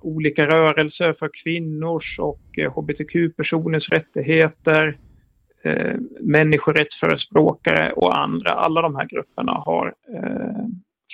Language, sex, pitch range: Swedish, male, 150-185 Hz